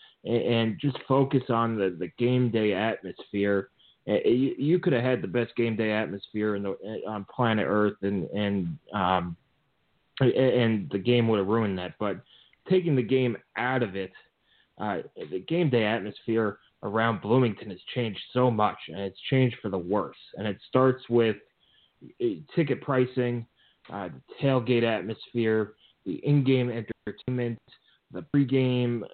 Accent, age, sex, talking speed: American, 30-49, male, 150 wpm